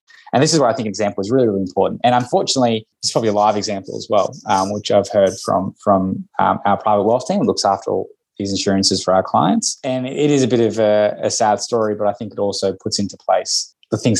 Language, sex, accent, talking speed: English, male, Australian, 255 wpm